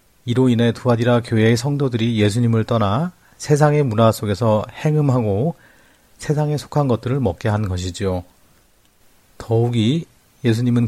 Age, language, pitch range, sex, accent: 40-59, Korean, 105-130 Hz, male, native